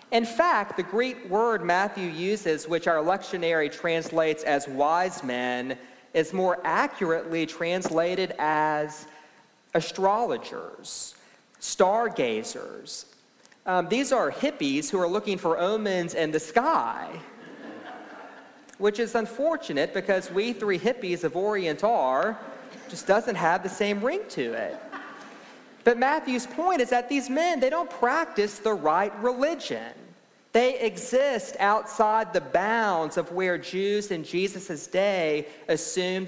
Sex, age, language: male, 40-59, English